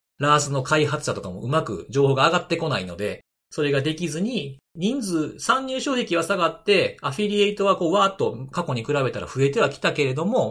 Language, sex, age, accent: Japanese, male, 40-59, native